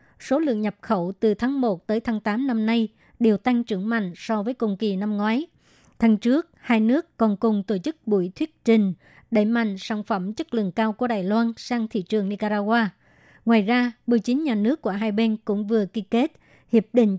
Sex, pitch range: male, 215-235 Hz